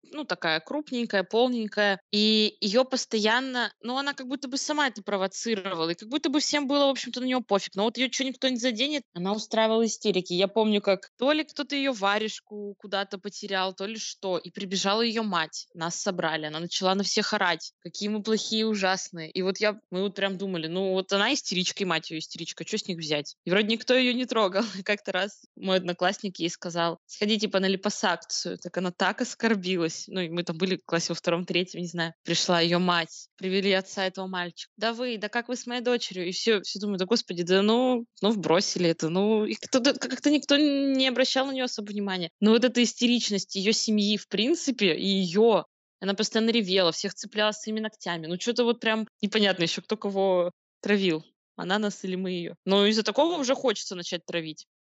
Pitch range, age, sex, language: 185-230 Hz, 20-39, female, Russian